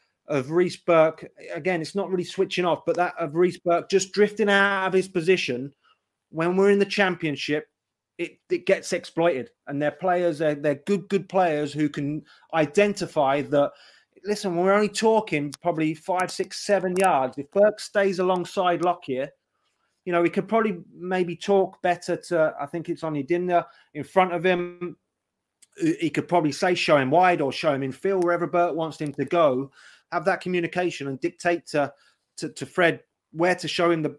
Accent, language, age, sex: British, English, 30-49, male